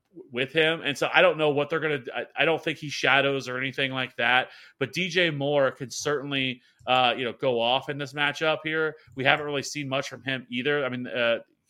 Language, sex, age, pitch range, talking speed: English, male, 30-49, 125-145 Hz, 230 wpm